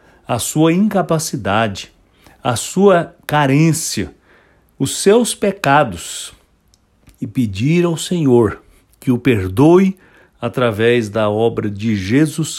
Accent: Brazilian